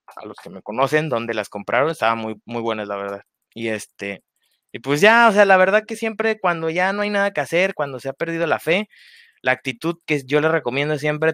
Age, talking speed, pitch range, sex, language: 20-39, 240 wpm, 130-175 Hz, male, Spanish